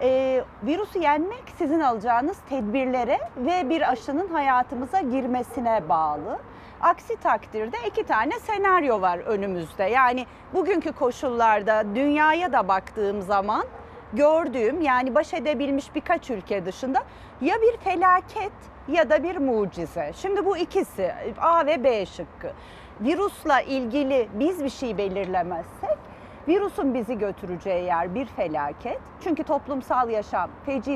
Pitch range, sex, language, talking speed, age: 230-350 Hz, female, Turkish, 120 wpm, 40-59